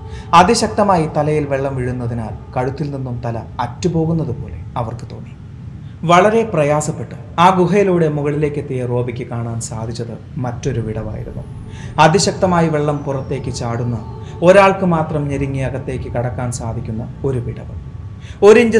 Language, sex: Malayalam, male